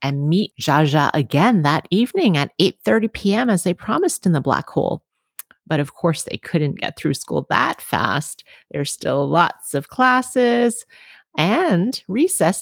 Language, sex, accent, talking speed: English, female, American, 155 wpm